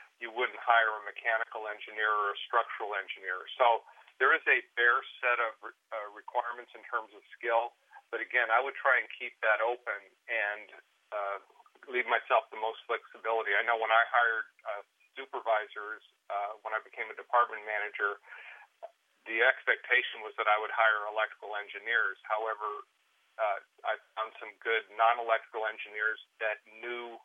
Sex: male